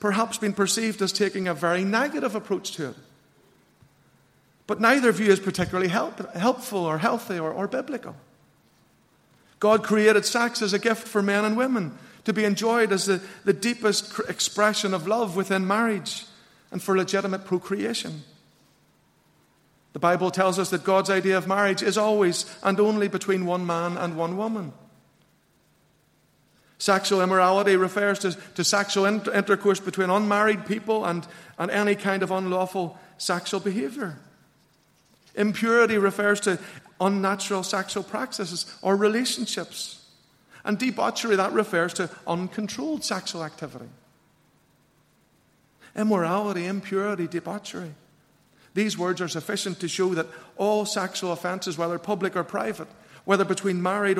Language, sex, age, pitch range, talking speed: English, male, 50-69, 180-210 Hz, 135 wpm